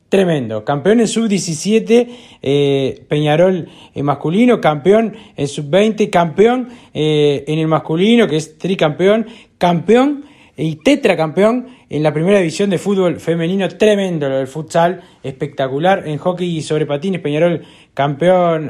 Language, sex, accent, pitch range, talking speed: Spanish, male, Argentinian, 145-180 Hz, 130 wpm